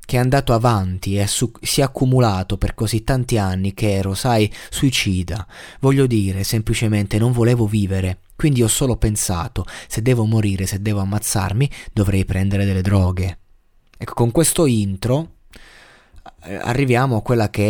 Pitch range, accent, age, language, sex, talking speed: 100-125 Hz, native, 20-39, Italian, male, 150 wpm